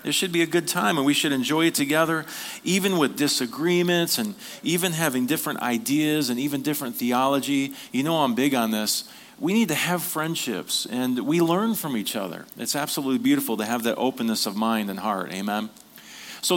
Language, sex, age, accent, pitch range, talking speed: English, male, 40-59, American, 125-170 Hz, 195 wpm